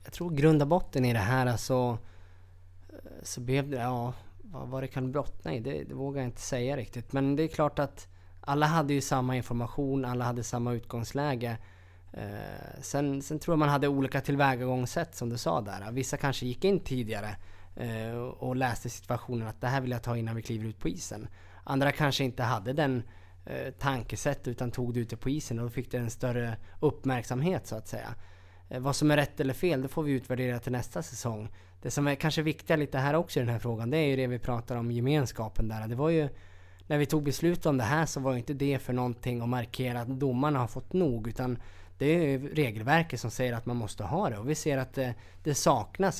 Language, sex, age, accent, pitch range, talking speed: Swedish, male, 20-39, native, 115-140 Hz, 220 wpm